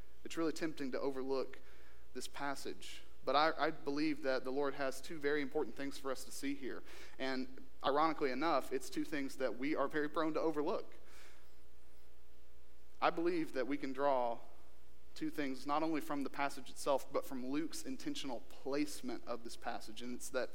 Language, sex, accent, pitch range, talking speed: English, male, American, 115-155 Hz, 180 wpm